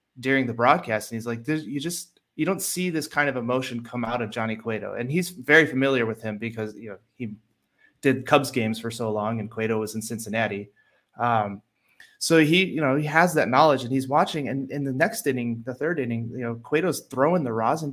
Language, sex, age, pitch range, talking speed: English, male, 30-49, 115-145 Hz, 225 wpm